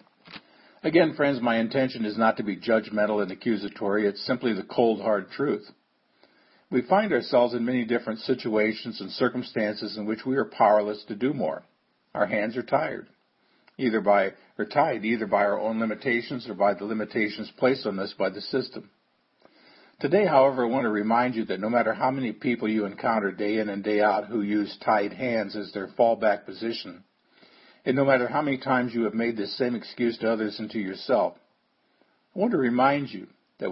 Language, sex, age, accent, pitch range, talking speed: English, male, 50-69, American, 105-125 Hz, 190 wpm